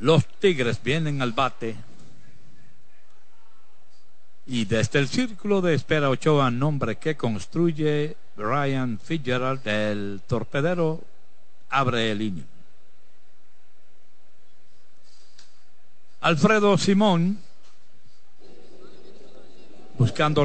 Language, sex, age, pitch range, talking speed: Spanish, male, 60-79, 115-155 Hz, 75 wpm